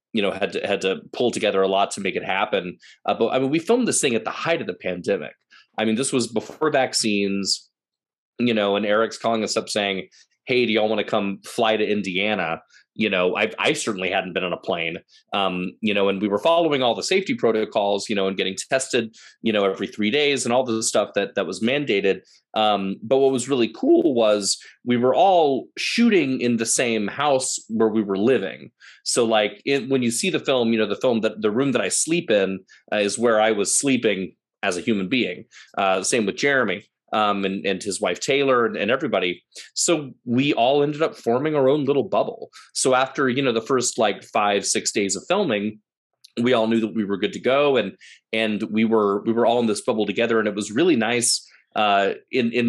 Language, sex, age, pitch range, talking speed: English, male, 30-49, 100-130 Hz, 230 wpm